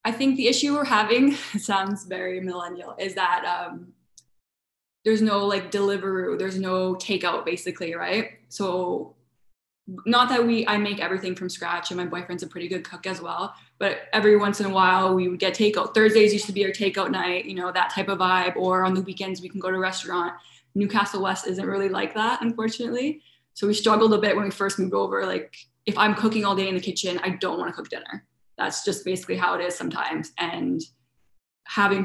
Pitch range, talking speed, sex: 185-210 Hz, 215 wpm, female